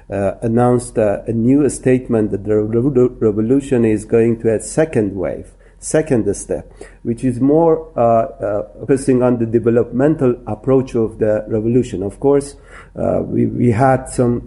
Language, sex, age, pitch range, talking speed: English, male, 50-69, 115-135 Hz, 155 wpm